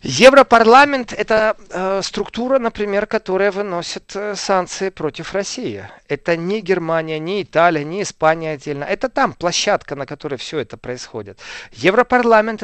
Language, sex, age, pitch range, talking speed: Russian, male, 40-59, 165-215 Hz, 125 wpm